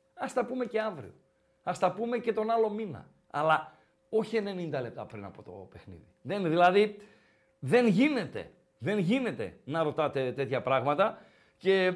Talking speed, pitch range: 155 wpm, 175-255 Hz